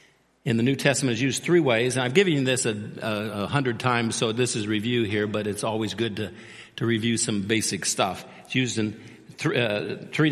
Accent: American